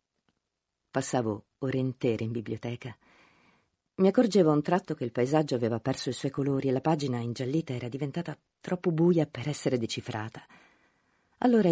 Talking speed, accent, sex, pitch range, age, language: 155 wpm, native, female, 130-180 Hz, 50-69, Italian